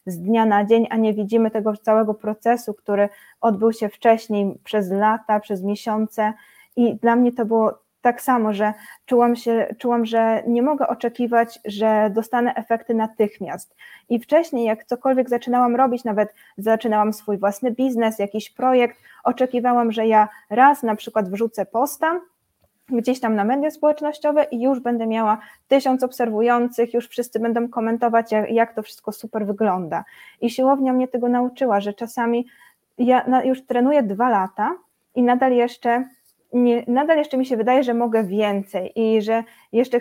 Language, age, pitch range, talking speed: Polish, 20-39, 215-250 Hz, 160 wpm